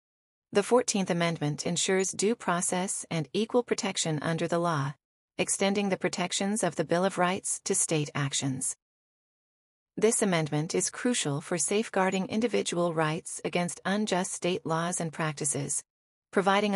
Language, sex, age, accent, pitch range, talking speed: English, female, 40-59, American, 160-200 Hz, 135 wpm